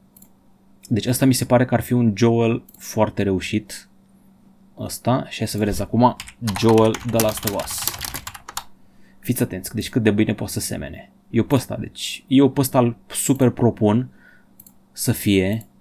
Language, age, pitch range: Romanian, 20-39, 105-130 Hz